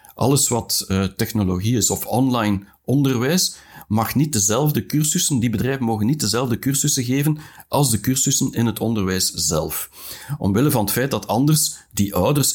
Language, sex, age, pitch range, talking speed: Dutch, male, 60-79, 100-135 Hz, 160 wpm